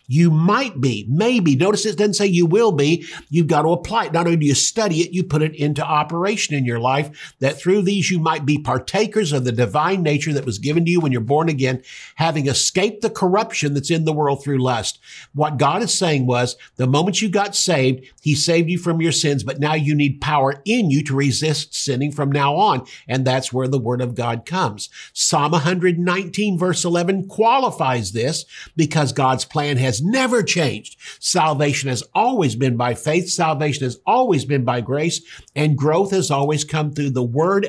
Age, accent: 50-69, American